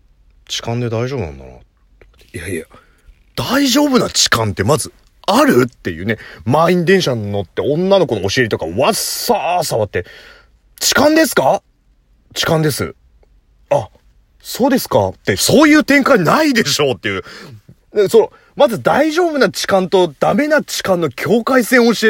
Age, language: 30-49, Japanese